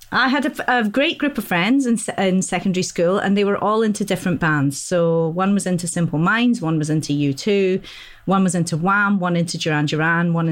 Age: 30-49